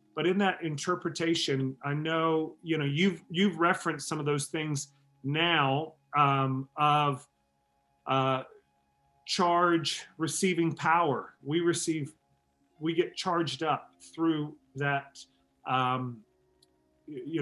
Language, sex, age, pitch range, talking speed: English, male, 40-59, 140-170 Hz, 110 wpm